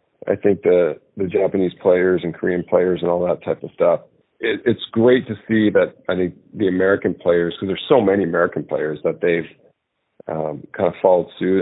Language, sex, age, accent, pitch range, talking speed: English, male, 40-59, American, 90-100 Hz, 200 wpm